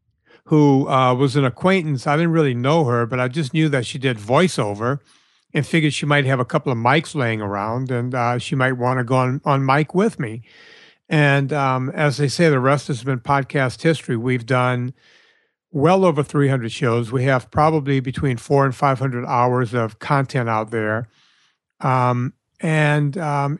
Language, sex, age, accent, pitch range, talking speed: English, male, 60-79, American, 130-160 Hz, 185 wpm